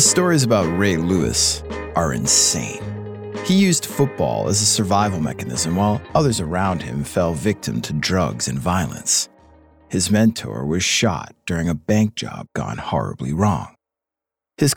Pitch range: 90-125 Hz